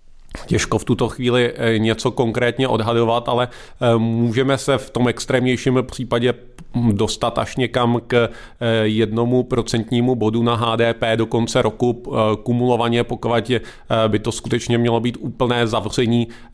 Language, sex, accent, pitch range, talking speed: Czech, male, native, 115-130 Hz, 125 wpm